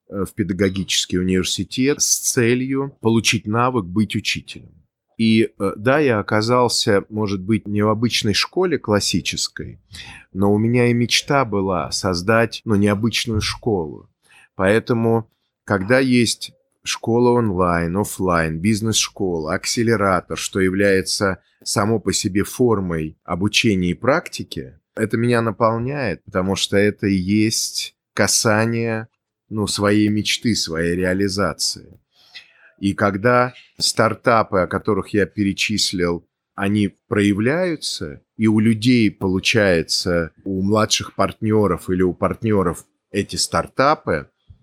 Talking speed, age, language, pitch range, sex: 110 wpm, 30-49, Russian, 95-115 Hz, male